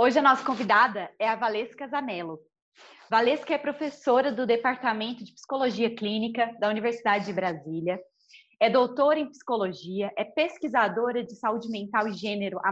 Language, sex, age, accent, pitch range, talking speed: Portuguese, female, 20-39, Brazilian, 205-275 Hz, 150 wpm